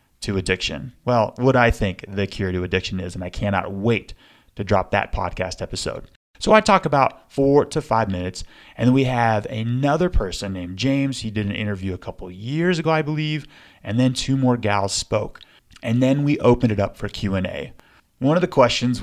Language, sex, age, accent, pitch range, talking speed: English, male, 30-49, American, 95-140 Hz, 205 wpm